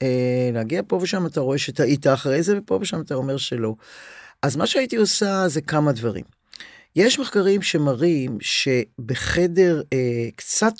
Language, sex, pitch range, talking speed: Hebrew, male, 135-180 Hz, 150 wpm